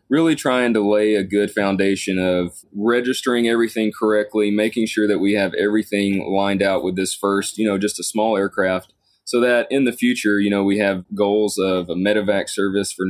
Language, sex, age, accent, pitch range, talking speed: English, male, 20-39, American, 95-105 Hz, 195 wpm